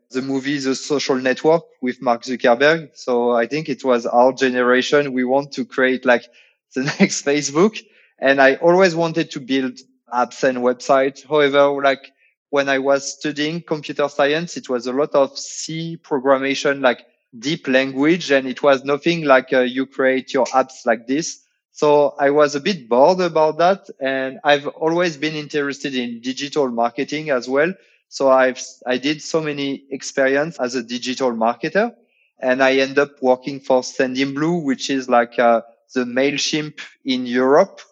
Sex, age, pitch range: male, 20-39, 130-150 Hz